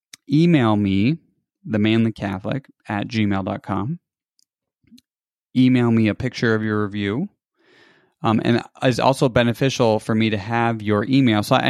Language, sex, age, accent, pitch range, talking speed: English, male, 20-39, American, 105-130 Hz, 125 wpm